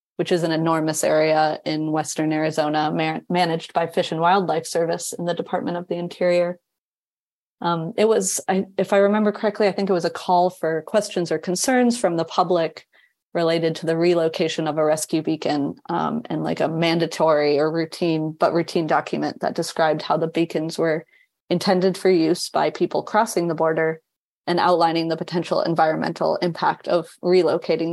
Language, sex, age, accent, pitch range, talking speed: English, female, 30-49, American, 160-180 Hz, 170 wpm